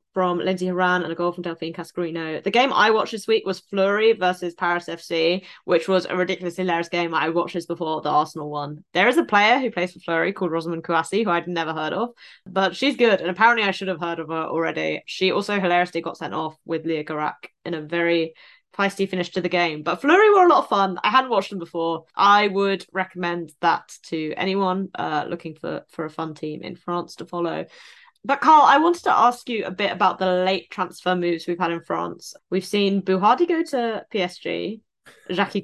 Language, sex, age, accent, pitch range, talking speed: English, female, 20-39, British, 170-220 Hz, 220 wpm